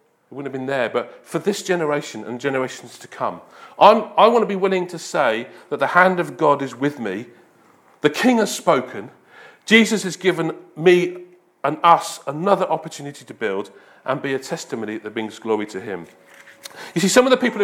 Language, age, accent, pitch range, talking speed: English, 40-59, British, 145-220 Hz, 195 wpm